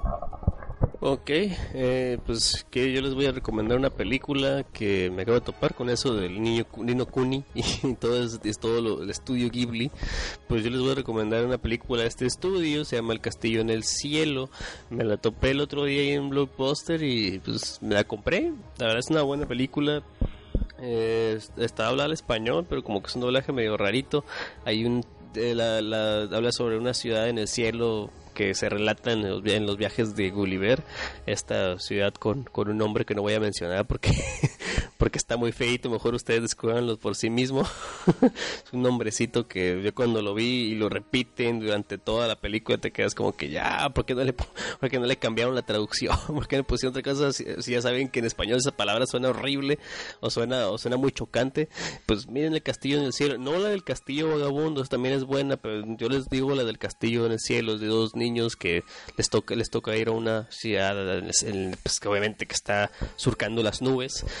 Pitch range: 110-130 Hz